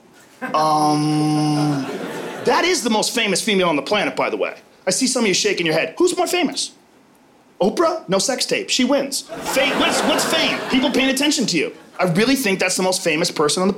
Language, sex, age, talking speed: English, male, 30-49, 215 wpm